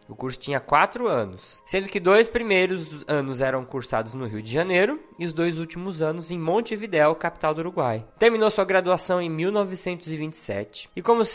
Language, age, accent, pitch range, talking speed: Portuguese, 20-39, Brazilian, 140-200 Hz, 175 wpm